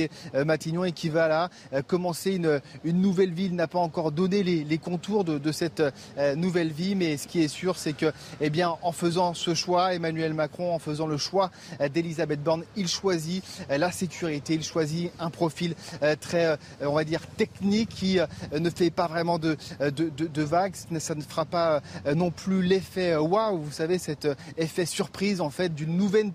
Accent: French